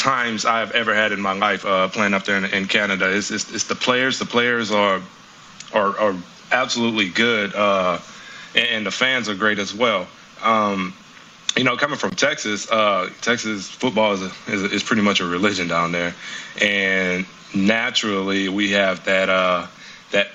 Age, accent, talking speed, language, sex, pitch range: 20-39, American, 185 wpm, English, male, 95-110 Hz